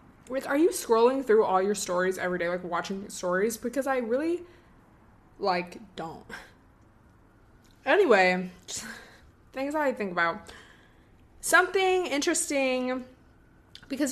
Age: 20-39